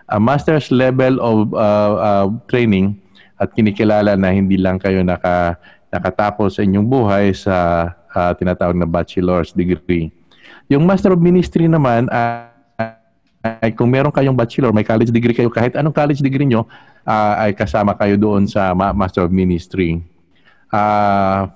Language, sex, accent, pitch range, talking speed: Filipino, male, native, 95-120 Hz, 150 wpm